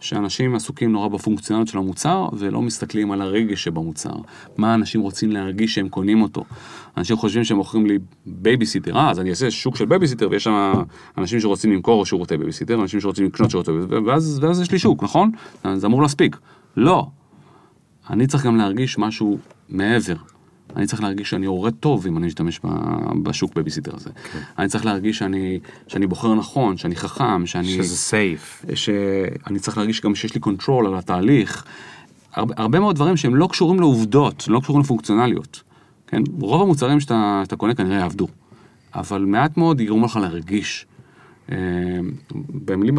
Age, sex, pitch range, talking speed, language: 30-49, male, 95-130 Hz, 155 wpm, Hebrew